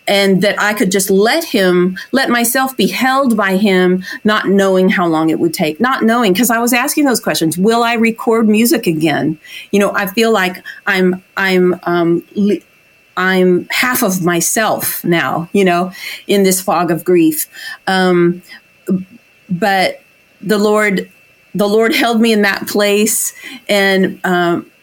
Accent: American